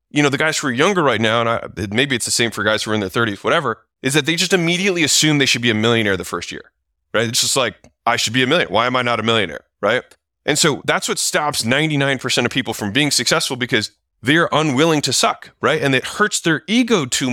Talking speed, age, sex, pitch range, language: 260 wpm, 20-39, male, 95-145 Hz, English